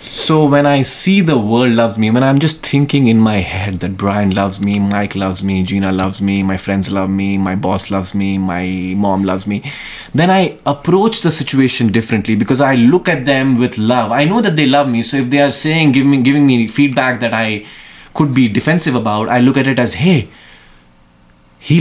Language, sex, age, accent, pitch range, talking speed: English, male, 20-39, Indian, 105-145 Hz, 215 wpm